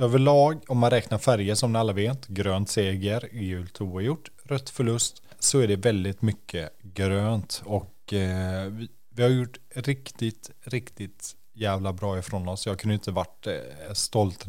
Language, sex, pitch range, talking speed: Swedish, male, 95-115 Hz, 165 wpm